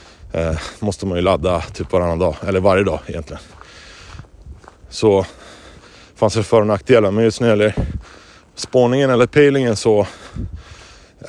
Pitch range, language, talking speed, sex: 90-115 Hz, Swedish, 150 wpm, male